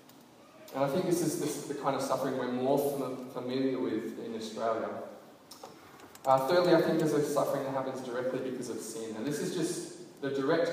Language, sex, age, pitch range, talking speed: English, male, 20-39, 120-150 Hz, 200 wpm